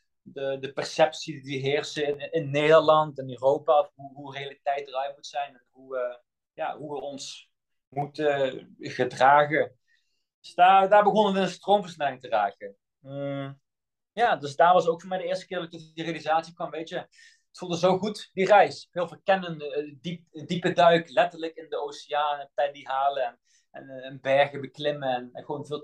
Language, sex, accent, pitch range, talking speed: Dutch, male, Dutch, 140-180 Hz, 185 wpm